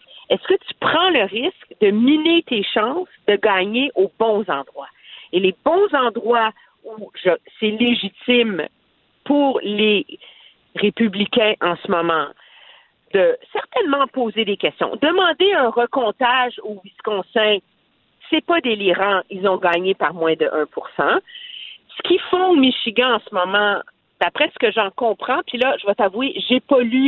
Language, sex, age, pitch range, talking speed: French, female, 50-69, 205-310 Hz, 155 wpm